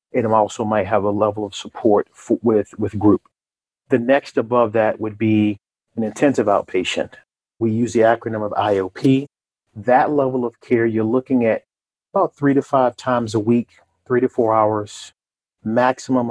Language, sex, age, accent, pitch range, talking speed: English, male, 40-59, American, 105-120 Hz, 170 wpm